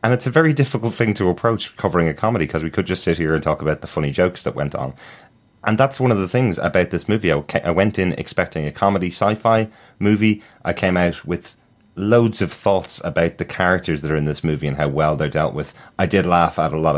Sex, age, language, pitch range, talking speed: male, 30-49, English, 75-95 Hz, 250 wpm